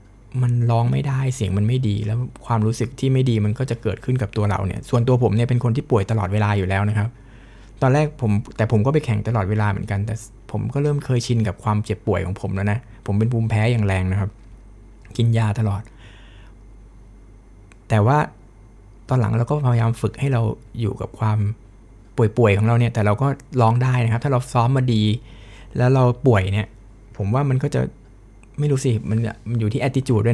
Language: Thai